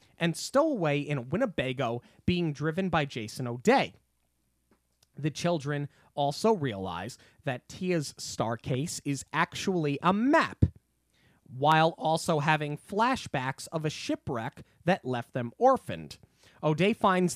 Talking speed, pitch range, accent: 120 wpm, 125-170 Hz, American